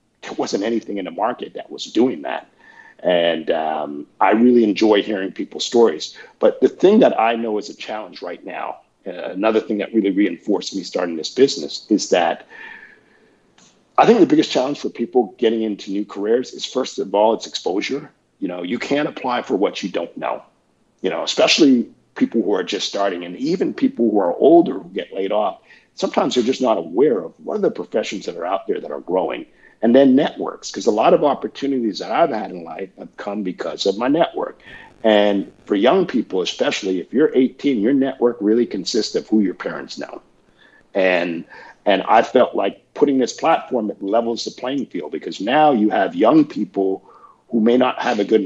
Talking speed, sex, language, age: 205 wpm, male, English, 50-69